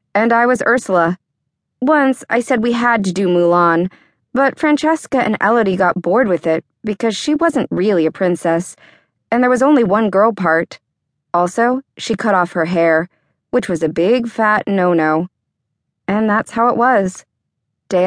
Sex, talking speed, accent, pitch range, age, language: female, 170 wpm, American, 170-230 Hz, 20-39, English